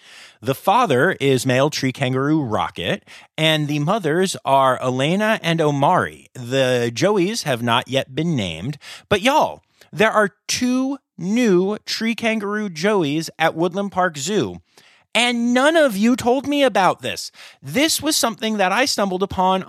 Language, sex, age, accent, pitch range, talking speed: English, male, 30-49, American, 135-215 Hz, 150 wpm